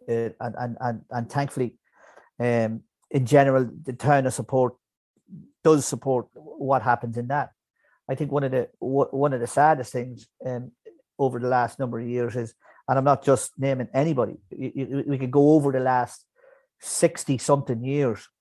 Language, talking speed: English, 185 wpm